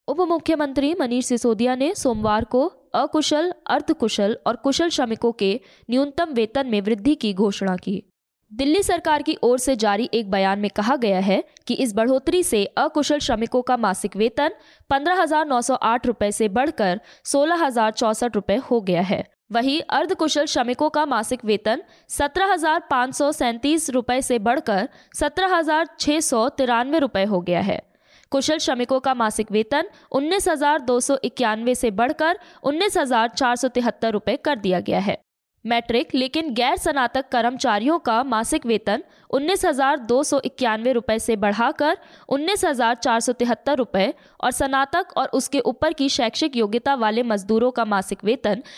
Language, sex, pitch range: Hindi, female, 225-300 Hz